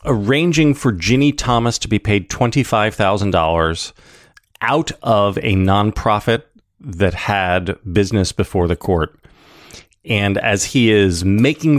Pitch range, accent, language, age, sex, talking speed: 90-120 Hz, American, English, 30-49, male, 115 wpm